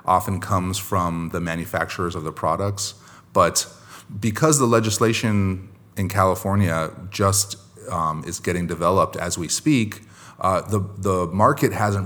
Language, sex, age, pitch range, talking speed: English, male, 30-49, 85-105 Hz, 135 wpm